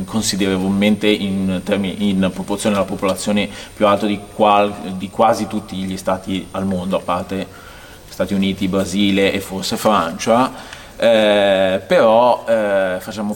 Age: 30-49